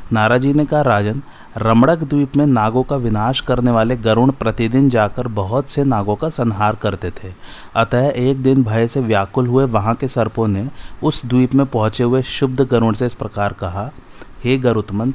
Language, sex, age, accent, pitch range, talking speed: Hindi, male, 30-49, native, 110-130 Hz, 185 wpm